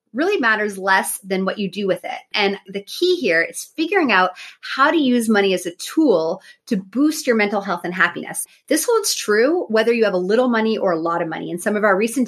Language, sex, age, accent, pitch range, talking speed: English, female, 30-49, American, 185-230 Hz, 240 wpm